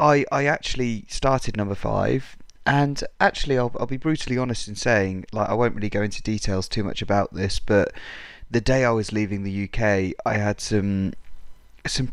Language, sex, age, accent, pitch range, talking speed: English, male, 20-39, British, 100-120 Hz, 190 wpm